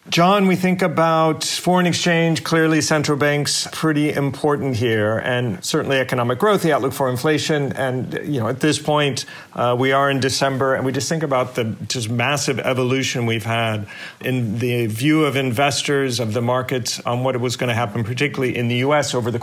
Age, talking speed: 40-59, 190 wpm